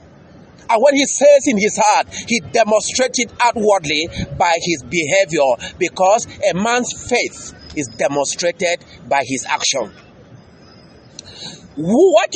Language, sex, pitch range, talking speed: English, male, 195-290 Hz, 115 wpm